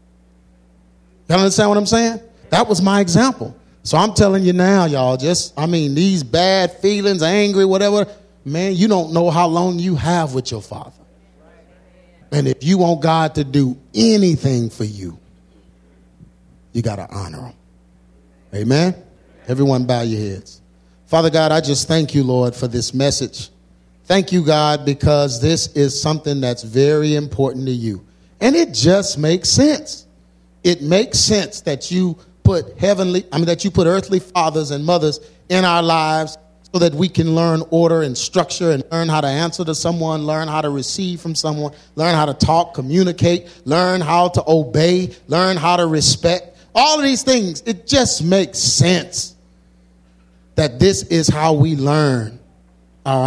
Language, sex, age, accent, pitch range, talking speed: English, male, 40-59, American, 120-175 Hz, 170 wpm